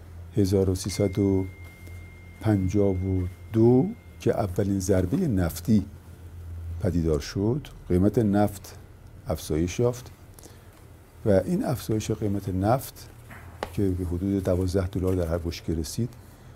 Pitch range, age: 95-115 Hz, 50-69